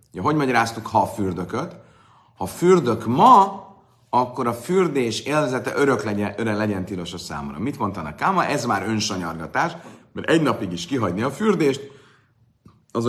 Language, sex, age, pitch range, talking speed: Hungarian, male, 40-59, 100-130 Hz, 150 wpm